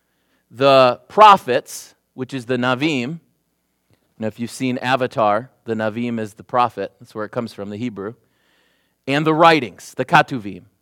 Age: 30-49